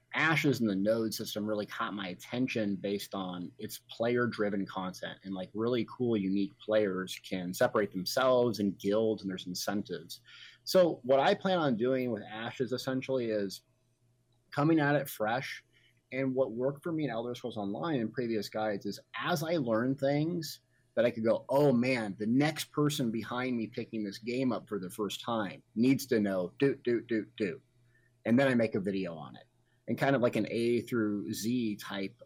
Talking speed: 190 wpm